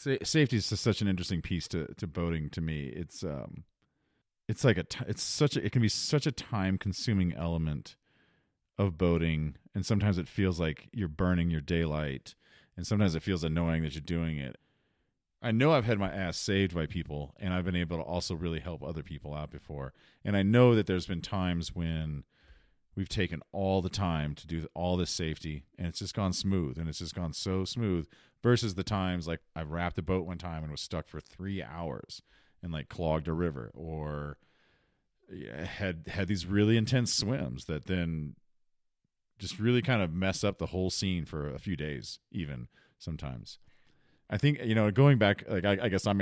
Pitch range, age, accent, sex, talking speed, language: 80-100 Hz, 40-59, American, male, 200 wpm, English